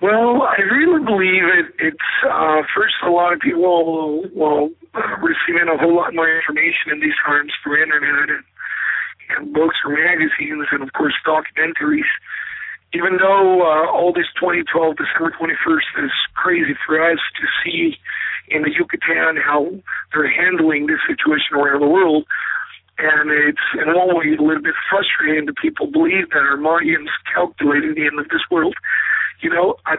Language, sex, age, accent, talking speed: English, male, 50-69, American, 170 wpm